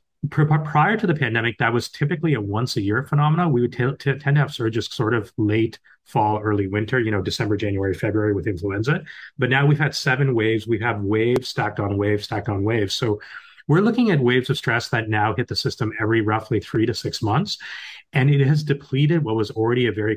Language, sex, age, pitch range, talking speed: English, male, 30-49, 105-135 Hz, 225 wpm